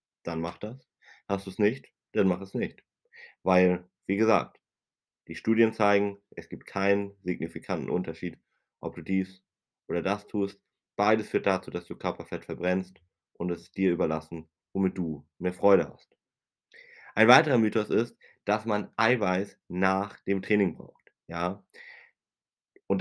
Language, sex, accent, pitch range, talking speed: German, male, German, 90-115 Hz, 150 wpm